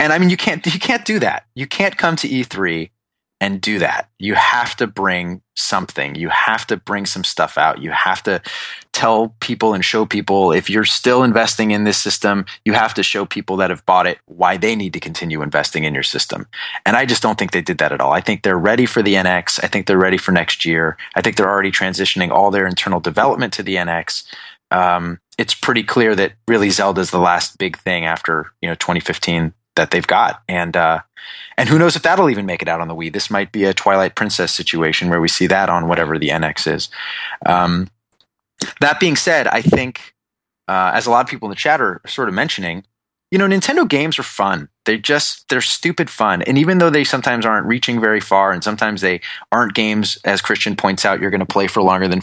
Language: English